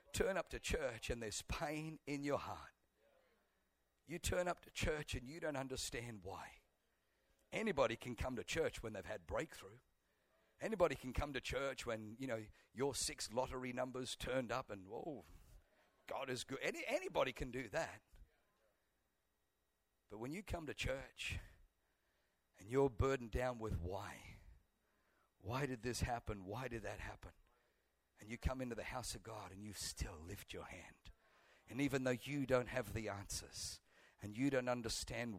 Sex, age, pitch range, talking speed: male, 50-69, 100-135 Hz, 170 wpm